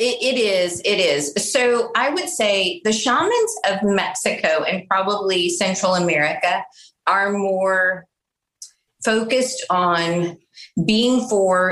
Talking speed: 115 wpm